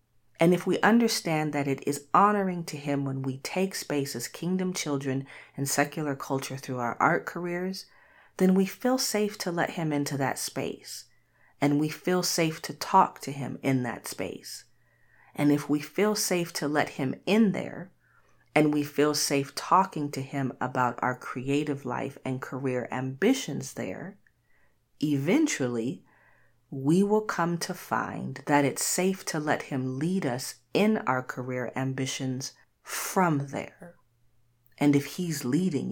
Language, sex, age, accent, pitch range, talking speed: English, female, 40-59, American, 130-175 Hz, 155 wpm